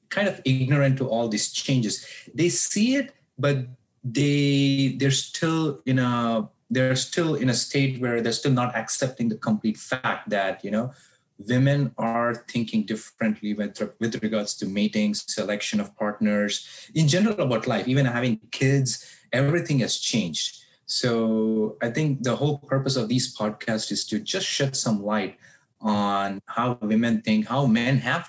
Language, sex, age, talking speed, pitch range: English, male, 30-49, 160 wpm, 110-135 Hz